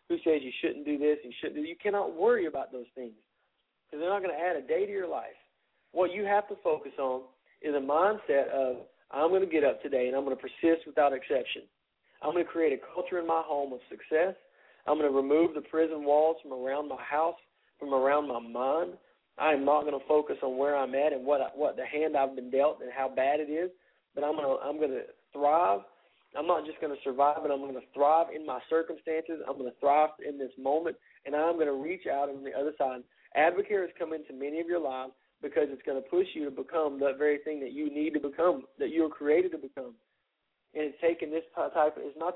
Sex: male